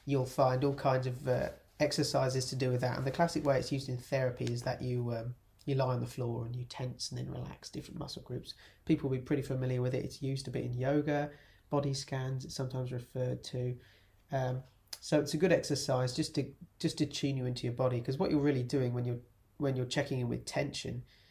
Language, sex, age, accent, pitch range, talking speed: English, male, 30-49, British, 120-140 Hz, 235 wpm